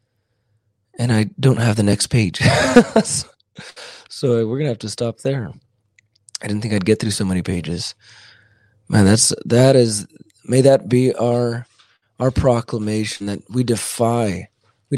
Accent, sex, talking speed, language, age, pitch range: American, male, 155 wpm, English, 30-49, 105-125 Hz